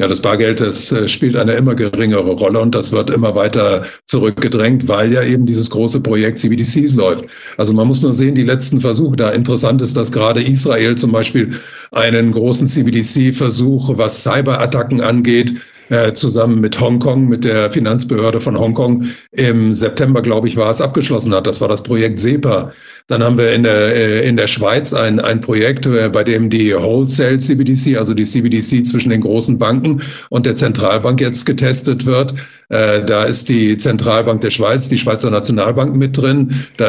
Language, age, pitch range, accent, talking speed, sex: German, 50-69, 115-130 Hz, German, 175 wpm, male